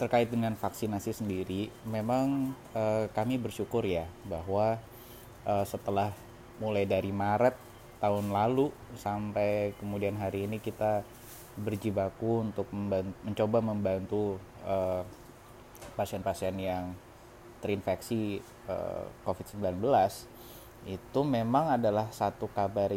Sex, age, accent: male, 20-39, native